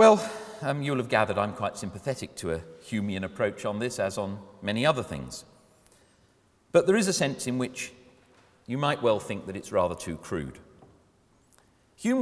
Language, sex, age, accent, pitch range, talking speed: English, male, 40-59, British, 100-135 Hz, 175 wpm